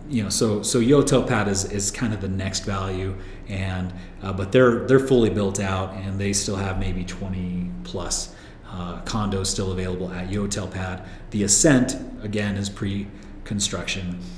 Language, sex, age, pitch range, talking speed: English, male, 30-49, 95-115 Hz, 160 wpm